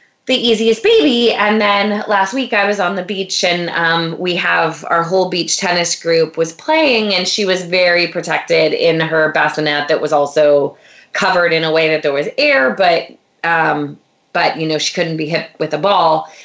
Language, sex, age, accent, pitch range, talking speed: English, female, 20-39, American, 160-200 Hz, 195 wpm